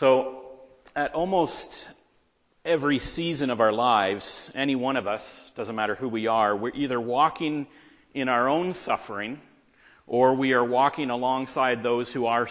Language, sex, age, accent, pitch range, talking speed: English, male, 40-59, American, 125-150 Hz, 155 wpm